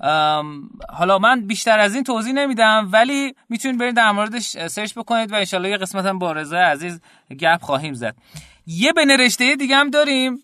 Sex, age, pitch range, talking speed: male, 30-49, 170-230 Hz, 165 wpm